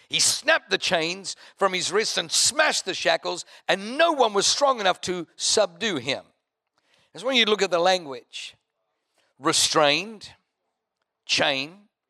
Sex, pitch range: male, 165-245 Hz